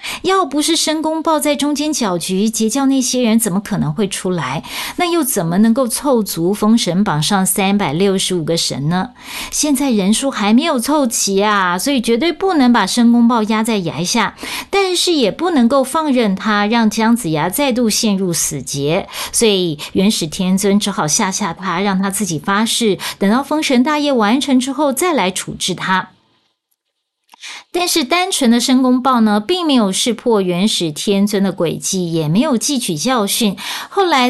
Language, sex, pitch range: Chinese, female, 180-250 Hz